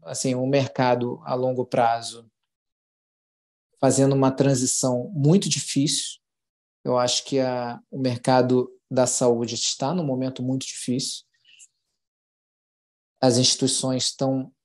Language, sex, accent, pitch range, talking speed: Portuguese, male, Brazilian, 125-140 Hz, 115 wpm